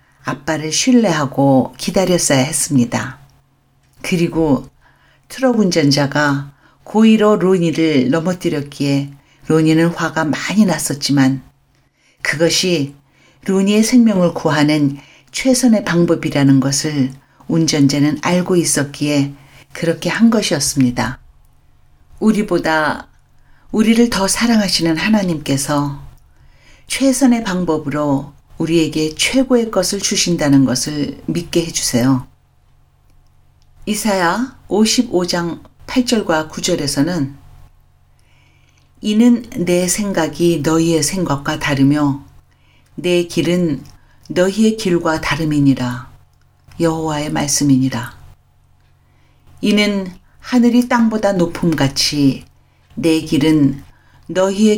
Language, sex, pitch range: Korean, female, 140-190 Hz